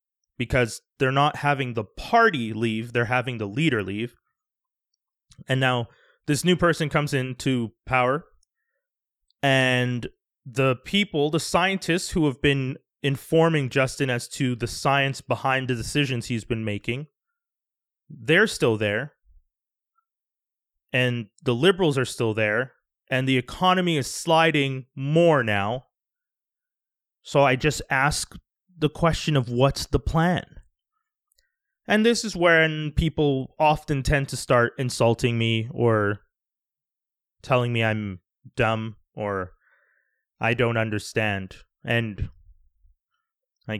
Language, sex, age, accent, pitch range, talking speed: English, male, 30-49, American, 120-165 Hz, 120 wpm